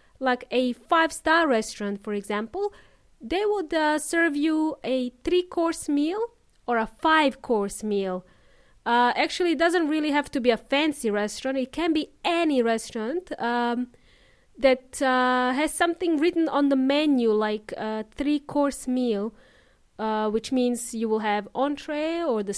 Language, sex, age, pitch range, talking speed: English, female, 30-49, 230-305 Hz, 150 wpm